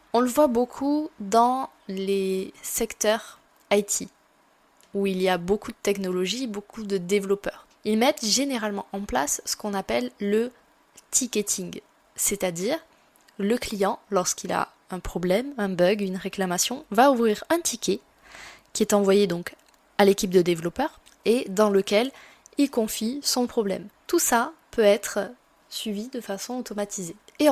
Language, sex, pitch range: French, female, 200-245 Hz